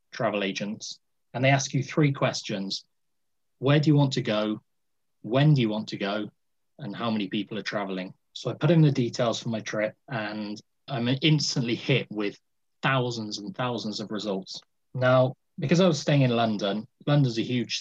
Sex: male